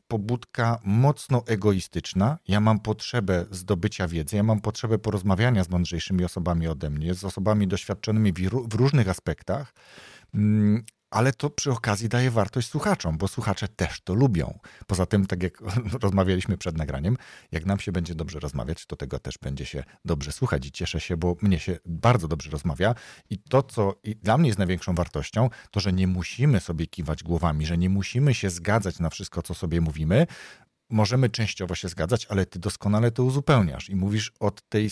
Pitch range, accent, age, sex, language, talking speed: 90-115 Hz, native, 40-59, male, Polish, 175 wpm